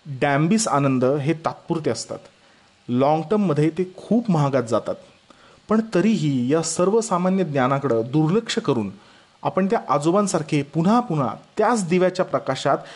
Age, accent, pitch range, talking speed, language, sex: 30-49, native, 140-180 Hz, 120 wpm, Marathi, male